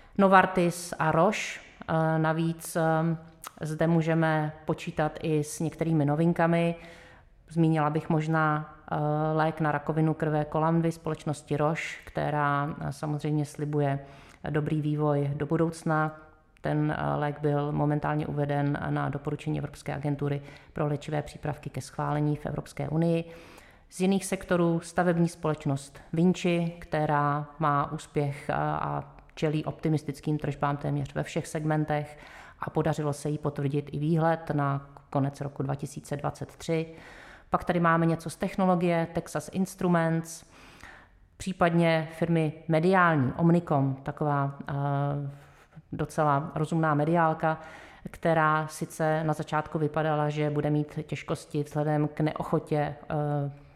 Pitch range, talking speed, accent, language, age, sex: 145-165 Hz, 115 wpm, native, Czech, 30-49, female